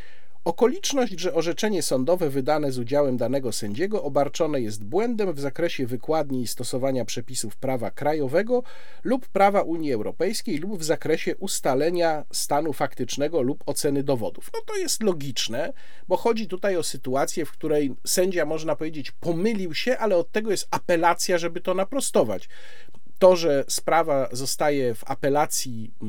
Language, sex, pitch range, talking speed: Polish, male, 135-205 Hz, 145 wpm